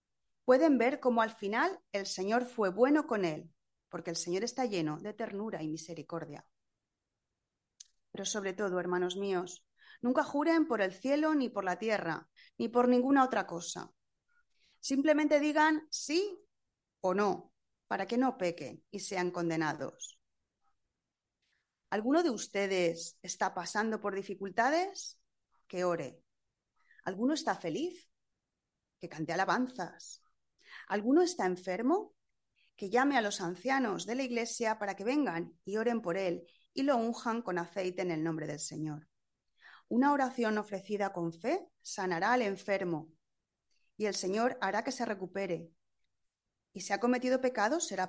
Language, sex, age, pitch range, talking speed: Spanish, female, 30-49, 180-255 Hz, 145 wpm